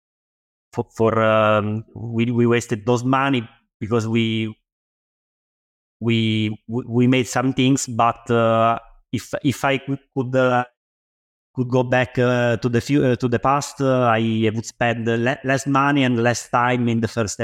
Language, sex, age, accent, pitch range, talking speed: English, male, 30-49, Italian, 115-135 Hz, 155 wpm